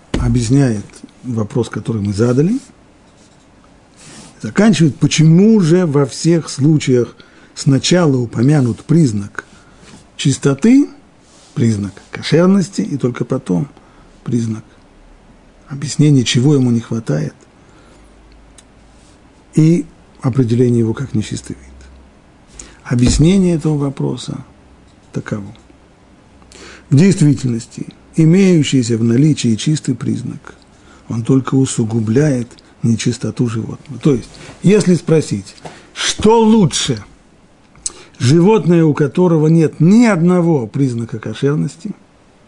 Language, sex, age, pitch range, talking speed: Russian, male, 50-69, 115-155 Hz, 90 wpm